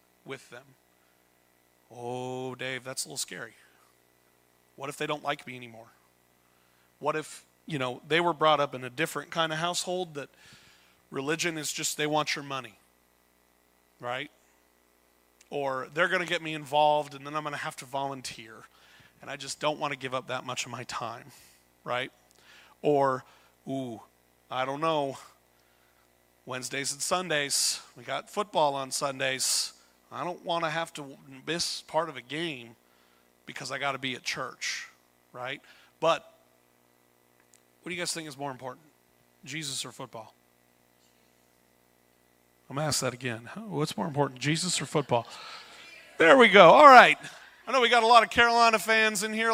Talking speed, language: 170 wpm, English